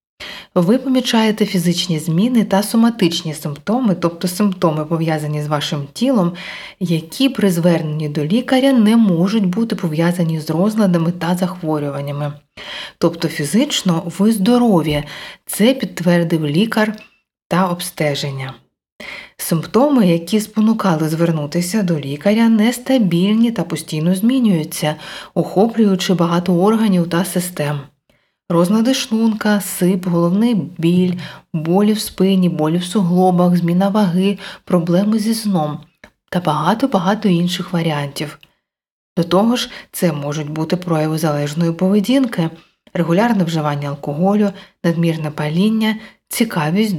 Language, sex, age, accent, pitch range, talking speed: Ukrainian, female, 30-49, native, 160-210 Hz, 110 wpm